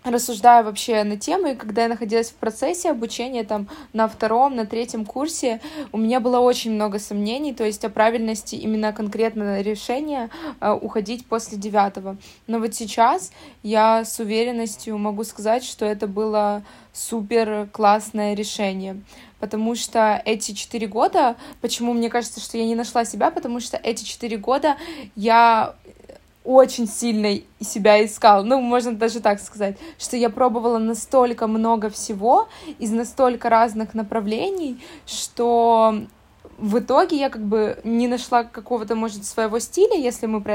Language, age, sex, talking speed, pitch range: Ukrainian, 20-39, female, 150 wpm, 215-245 Hz